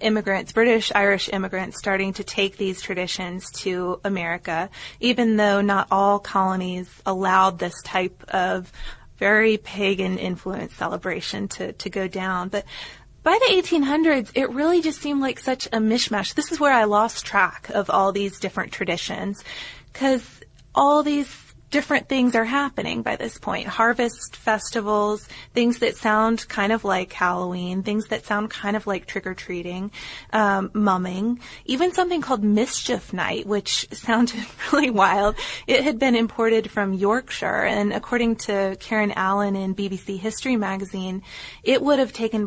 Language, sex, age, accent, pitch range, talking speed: English, female, 20-39, American, 190-230 Hz, 150 wpm